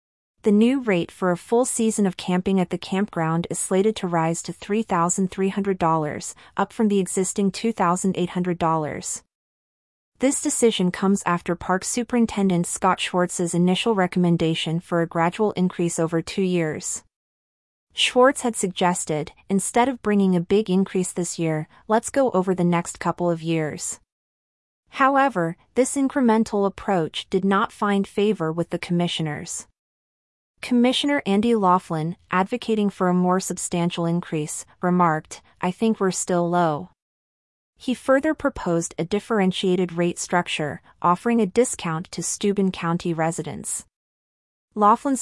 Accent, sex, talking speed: American, female, 135 wpm